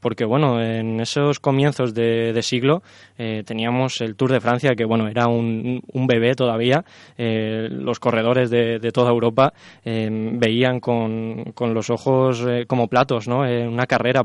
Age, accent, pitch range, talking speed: 20-39, Spanish, 115-130 Hz, 175 wpm